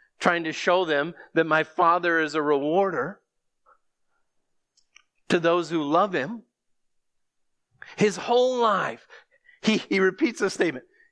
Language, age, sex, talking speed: English, 40-59, male, 125 wpm